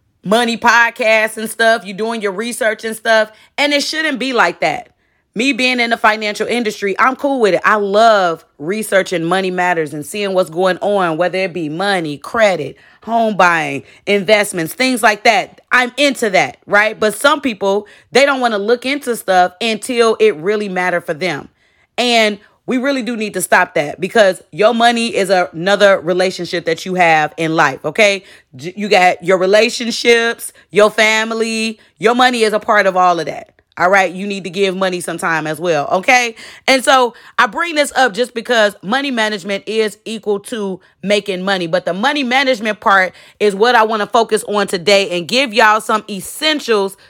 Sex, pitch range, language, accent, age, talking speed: female, 185-230 Hz, English, American, 30-49, 185 wpm